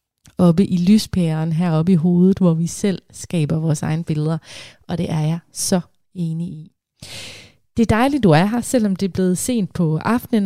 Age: 30-49